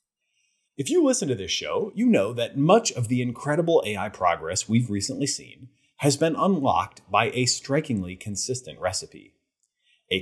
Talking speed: 160 wpm